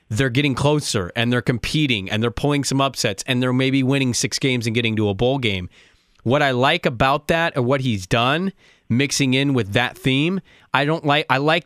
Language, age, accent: English, 20-39, American